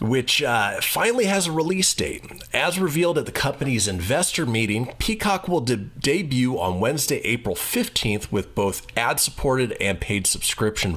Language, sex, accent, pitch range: English, male, American, 95-140 Hz